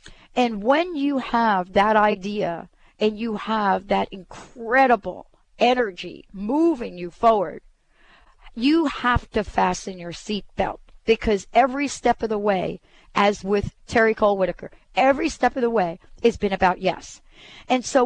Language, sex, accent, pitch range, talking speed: English, female, American, 195-245 Hz, 145 wpm